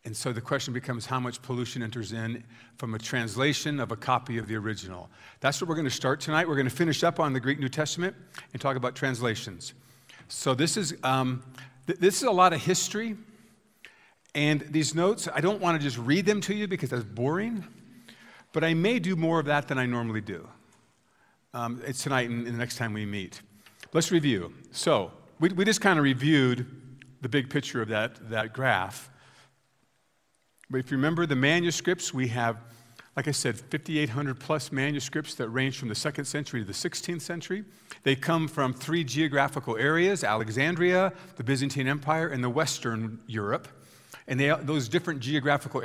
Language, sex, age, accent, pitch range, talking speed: English, male, 50-69, American, 125-165 Hz, 190 wpm